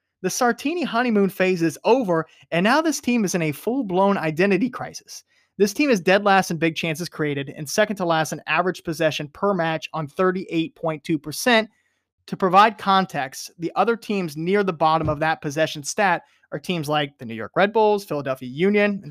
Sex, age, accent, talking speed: male, 30-49, American, 190 wpm